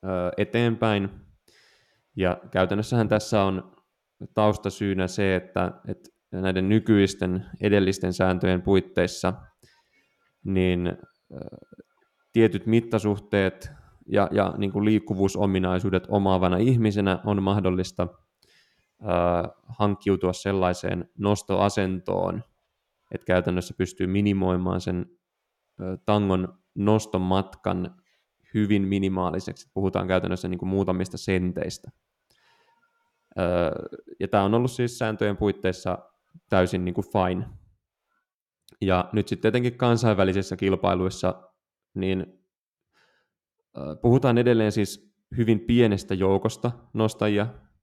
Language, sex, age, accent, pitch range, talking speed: Finnish, male, 20-39, native, 95-110 Hz, 85 wpm